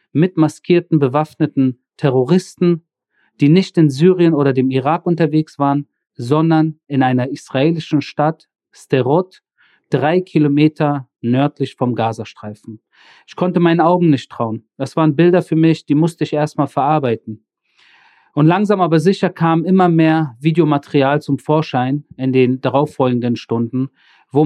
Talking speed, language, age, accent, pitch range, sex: 135 wpm, German, 40-59, German, 135-160 Hz, male